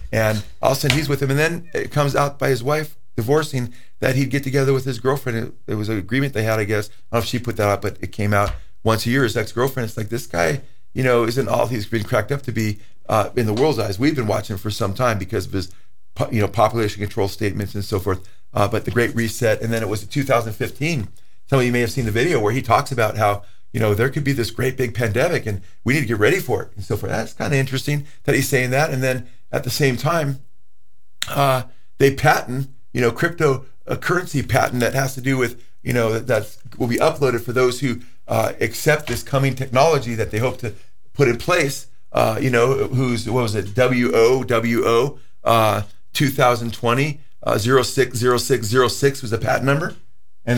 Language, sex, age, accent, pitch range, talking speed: English, male, 40-59, American, 110-135 Hz, 235 wpm